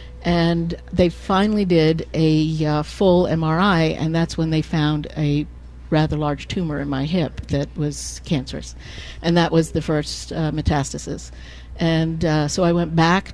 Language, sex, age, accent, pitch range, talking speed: English, female, 50-69, American, 150-175 Hz, 160 wpm